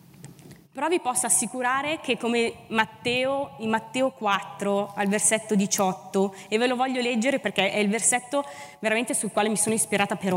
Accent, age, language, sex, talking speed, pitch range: native, 20-39, Italian, female, 170 wpm, 185-240 Hz